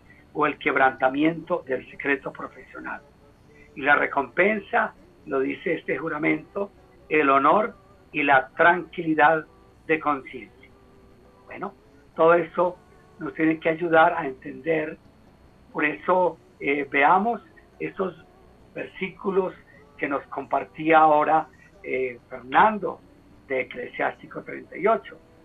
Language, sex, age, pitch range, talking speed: Spanish, male, 50-69, 135-175 Hz, 105 wpm